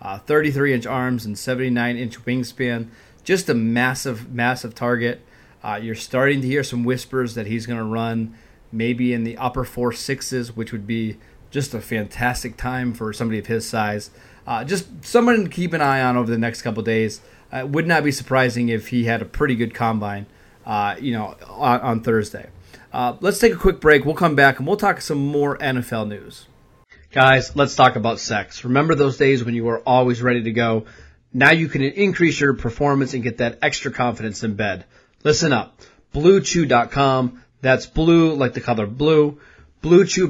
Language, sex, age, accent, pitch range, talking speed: English, male, 30-49, American, 115-145 Hz, 190 wpm